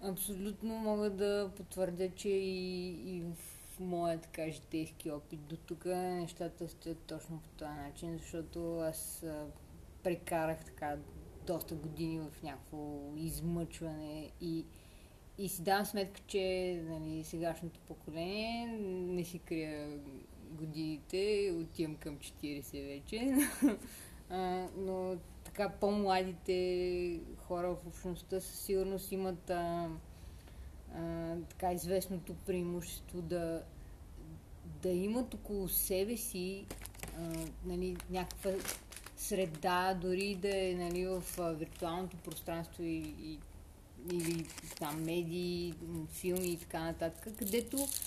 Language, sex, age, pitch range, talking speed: Bulgarian, female, 20-39, 155-185 Hz, 95 wpm